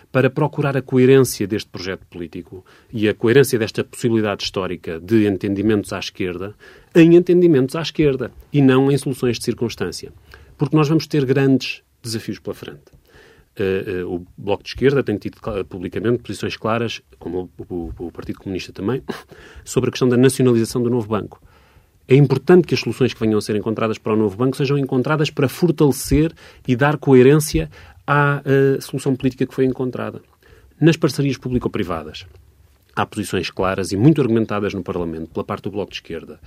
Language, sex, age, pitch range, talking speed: Portuguese, male, 30-49, 100-135 Hz, 170 wpm